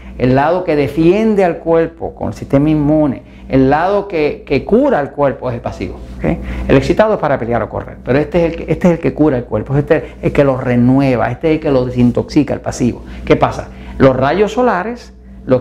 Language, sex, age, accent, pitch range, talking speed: Spanish, male, 50-69, American, 120-180 Hz, 230 wpm